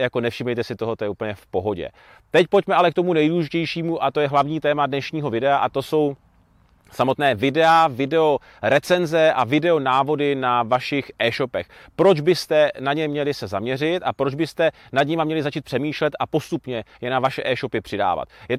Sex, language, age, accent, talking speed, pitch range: male, Czech, 30-49, native, 185 wpm, 135-165 Hz